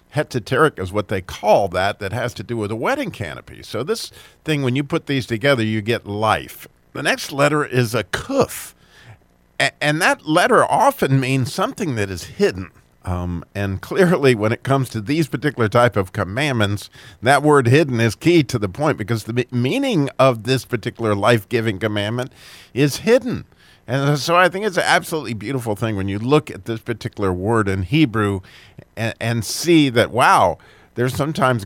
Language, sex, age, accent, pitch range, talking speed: English, male, 50-69, American, 105-140 Hz, 180 wpm